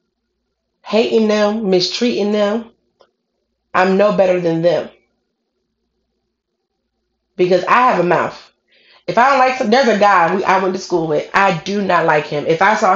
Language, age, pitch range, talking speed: English, 20-39, 185-245 Hz, 165 wpm